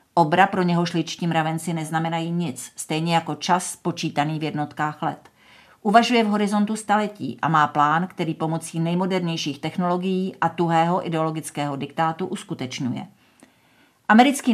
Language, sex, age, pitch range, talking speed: Czech, female, 50-69, 155-185 Hz, 130 wpm